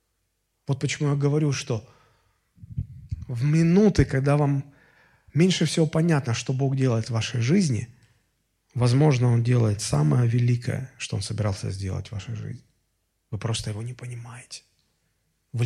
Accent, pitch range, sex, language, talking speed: native, 115-155 Hz, male, Russian, 140 wpm